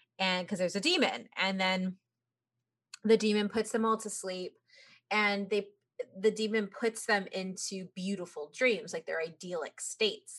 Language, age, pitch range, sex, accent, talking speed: English, 20-39, 190-255 Hz, female, American, 155 wpm